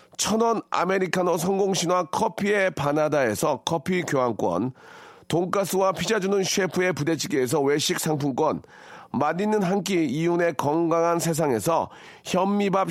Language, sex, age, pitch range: Korean, male, 40-59, 165-210 Hz